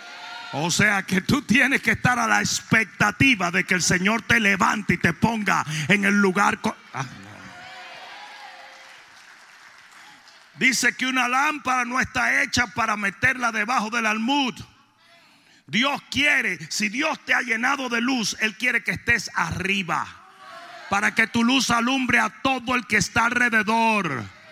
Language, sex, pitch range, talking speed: Spanish, male, 200-255 Hz, 145 wpm